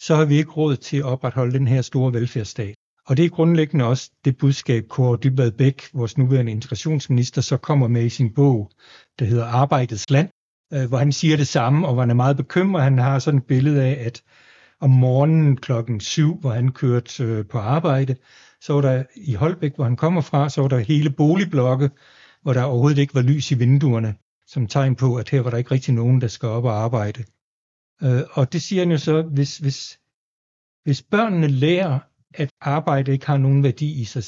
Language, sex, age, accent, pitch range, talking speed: Danish, male, 60-79, native, 125-150 Hz, 210 wpm